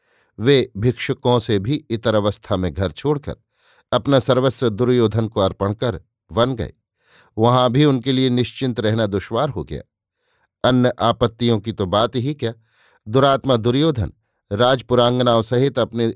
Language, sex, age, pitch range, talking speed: Hindi, male, 50-69, 105-125 Hz, 140 wpm